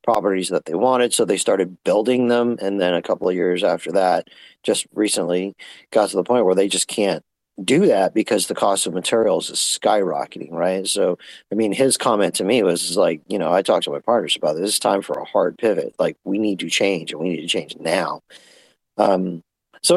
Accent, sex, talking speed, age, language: American, male, 220 wpm, 40-59, English